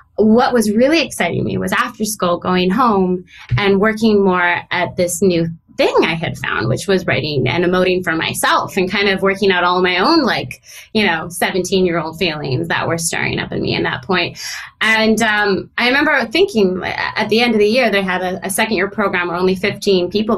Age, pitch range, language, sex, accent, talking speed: 20-39, 180-220 Hz, English, female, American, 215 wpm